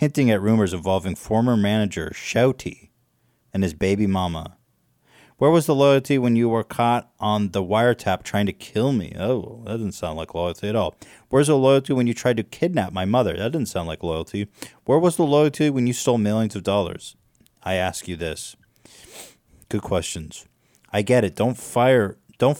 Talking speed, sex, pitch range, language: 185 wpm, male, 100-130 Hz, English